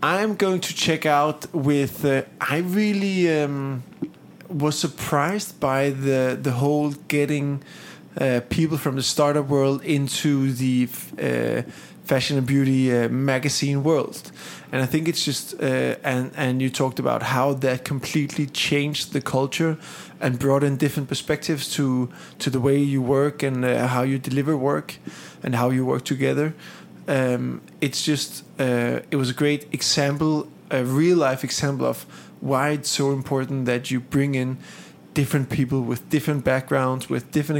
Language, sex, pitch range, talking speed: English, male, 130-150 Hz, 160 wpm